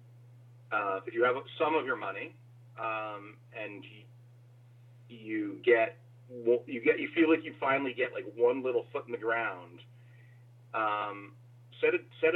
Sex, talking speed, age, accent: male, 155 wpm, 40-59, American